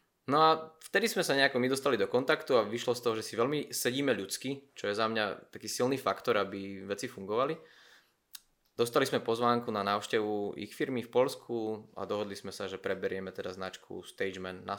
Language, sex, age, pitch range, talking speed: Slovak, male, 20-39, 100-125 Hz, 195 wpm